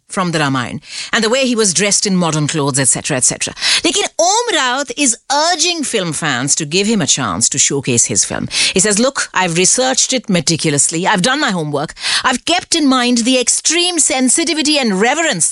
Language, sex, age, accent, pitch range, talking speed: English, female, 50-69, Indian, 175-280 Hz, 195 wpm